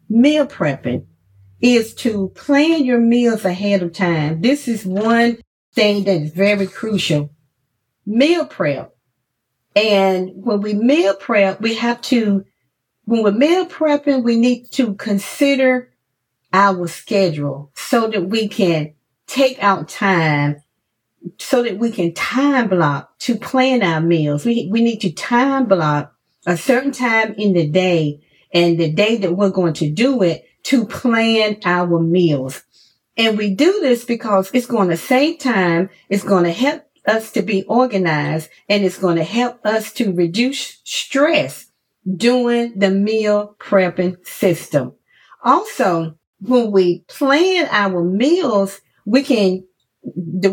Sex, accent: female, American